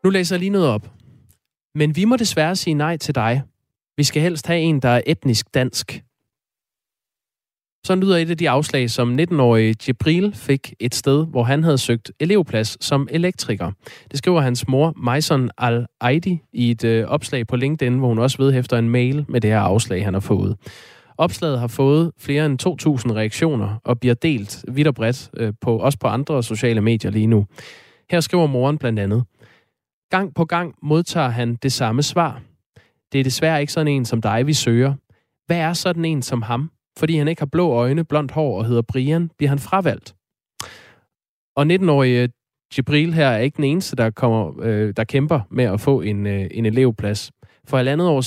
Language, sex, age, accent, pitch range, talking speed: Danish, male, 20-39, native, 115-155 Hz, 190 wpm